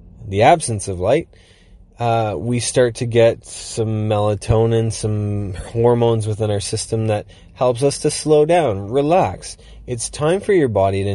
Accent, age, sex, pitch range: American, 20-39, male, 100-120 Hz